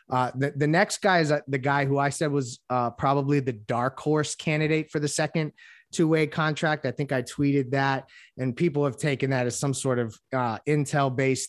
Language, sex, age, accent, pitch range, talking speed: English, male, 20-39, American, 130-150 Hz, 205 wpm